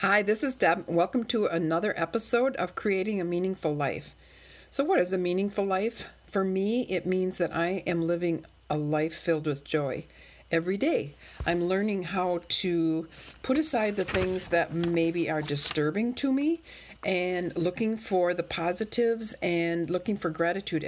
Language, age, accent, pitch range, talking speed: English, 50-69, American, 165-200 Hz, 165 wpm